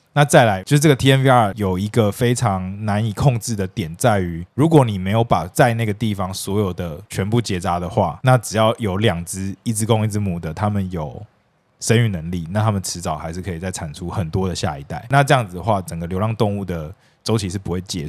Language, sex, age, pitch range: Chinese, male, 20-39, 95-125 Hz